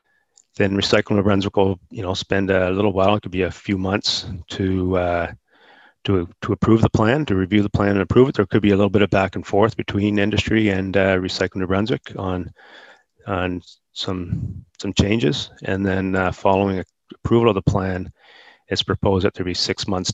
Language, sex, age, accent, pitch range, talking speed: English, male, 30-49, American, 95-105 Hz, 205 wpm